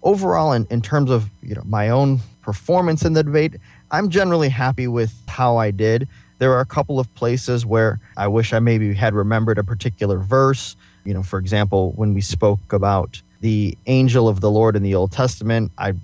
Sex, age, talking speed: male, 20-39, 200 wpm